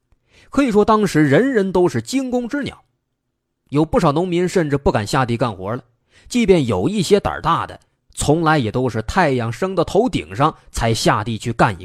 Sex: male